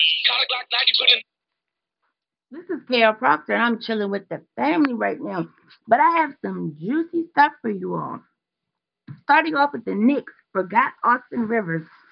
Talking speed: 145 wpm